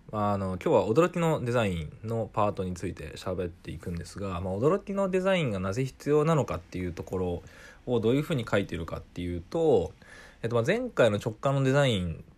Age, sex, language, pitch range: 20-39, male, Japanese, 95-140 Hz